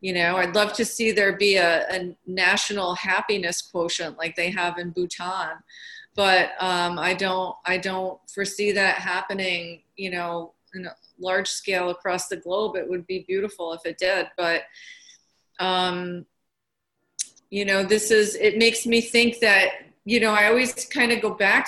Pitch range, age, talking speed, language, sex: 175-200 Hz, 30-49, 170 wpm, English, female